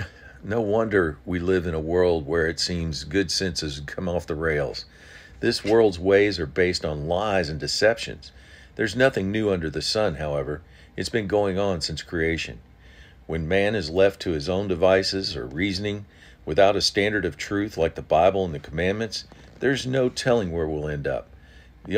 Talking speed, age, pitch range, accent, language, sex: 185 wpm, 50-69, 75-100 Hz, American, English, male